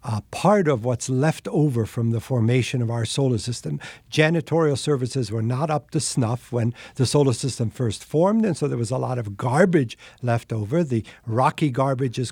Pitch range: 120-150 Hz